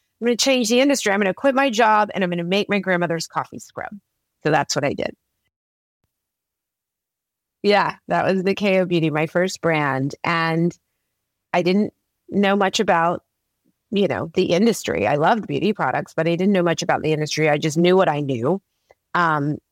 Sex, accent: female, American